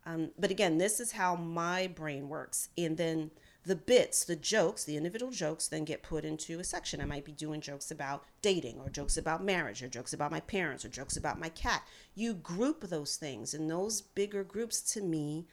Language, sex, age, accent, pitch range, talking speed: English, female, 40-59, American, 150-185 Hz, 215 wpm